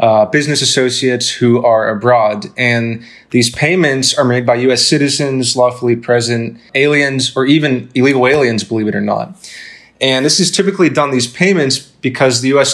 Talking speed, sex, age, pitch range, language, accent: 165 wpm, male, 20-39, 120-140 Hz, English, American